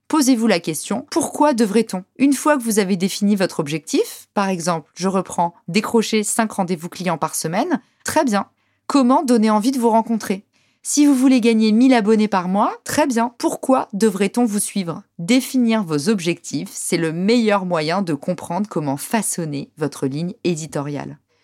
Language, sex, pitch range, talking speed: French, female, 180-230 Hz, 165 wpm